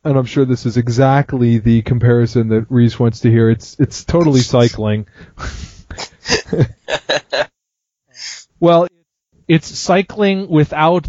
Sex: male